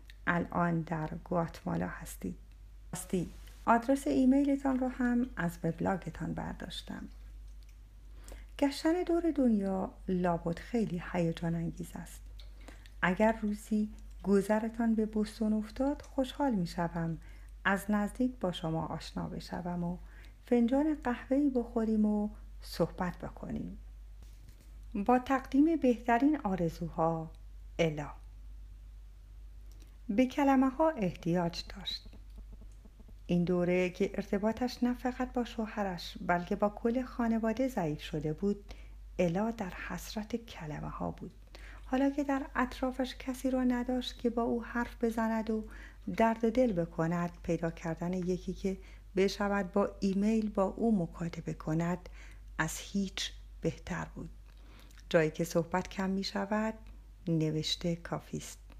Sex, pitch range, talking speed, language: female, 170-240 Hz, 115 wpm, Persian